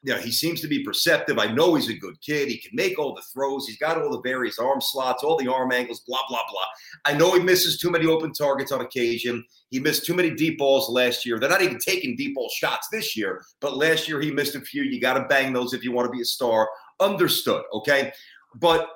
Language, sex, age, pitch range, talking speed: English, male, 40-59, 145-240 Hz, 255 wpm